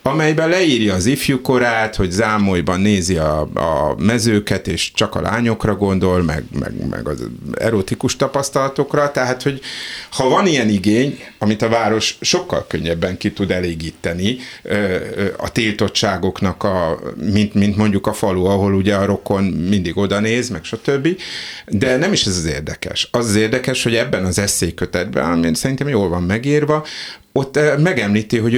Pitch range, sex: 90-115 Hz, male